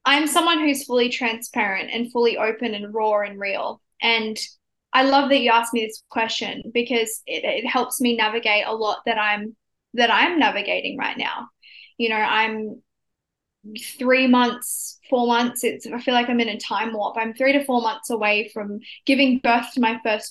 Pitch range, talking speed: 220-250 Hz, 190 wpm